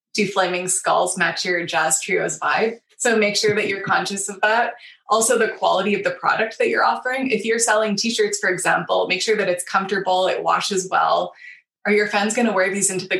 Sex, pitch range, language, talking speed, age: female, 185-215 Hz, English, 220 wpm, 20-39